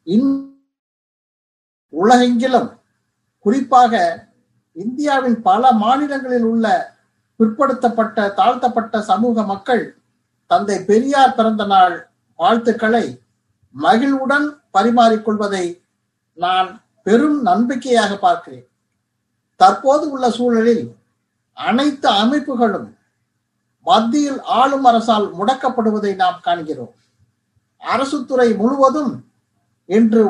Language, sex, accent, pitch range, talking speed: Tamil, male, native, 190-255 Hz, 70 wpm